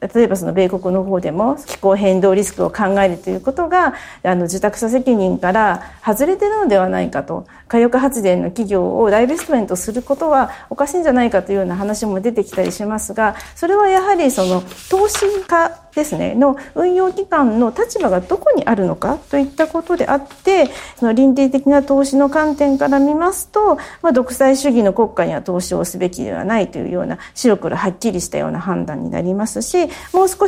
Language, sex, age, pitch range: Japanese, female, 40-59, 210-335 Hz